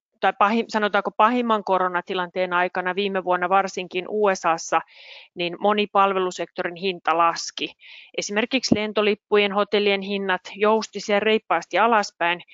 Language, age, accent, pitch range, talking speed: Finnish, 30-49, native, 180-210 Hz, 100 wpm